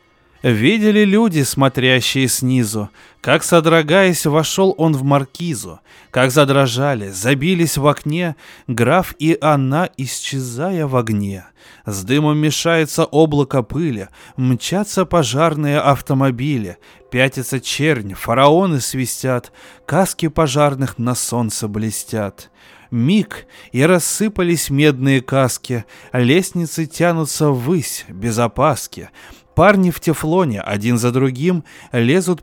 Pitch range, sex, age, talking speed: 120-160 Hz, male, 20-39, 100 wpm